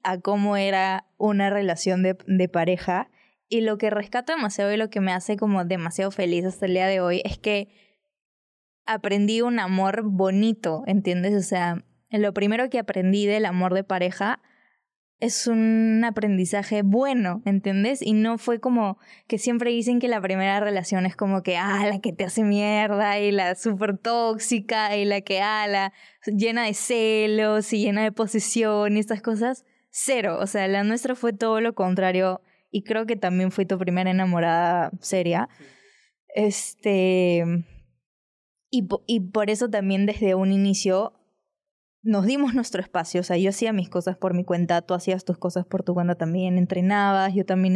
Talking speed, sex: 175 wpm, female